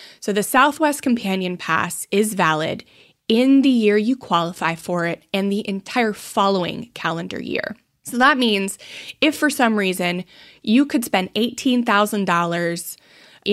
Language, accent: English, American